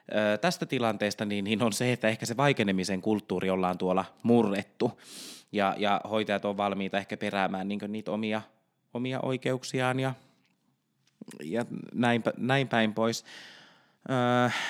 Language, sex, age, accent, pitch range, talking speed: Finnish, male, 20-39, native, 95-125 Hz, 140 wpm